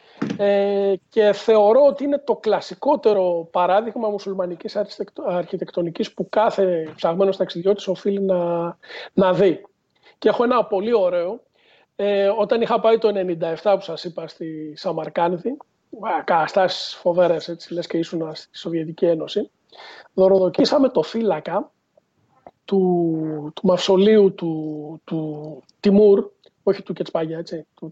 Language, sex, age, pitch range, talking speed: Greek, male, 40-59, 175-210 Hz, 125 wpm